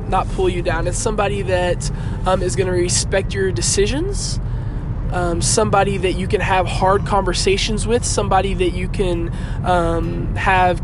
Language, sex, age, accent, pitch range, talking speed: English, male, 20-39, American, 100-145 Hz, 155 wpm